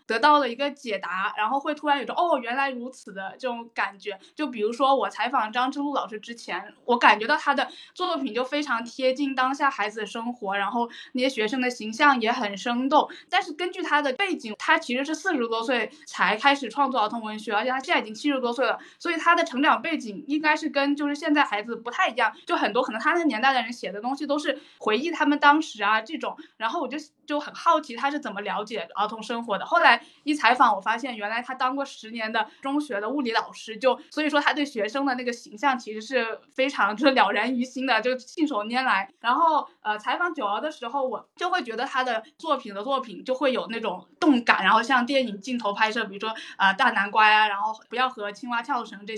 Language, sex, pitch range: Chinese, female, 220-290 Hz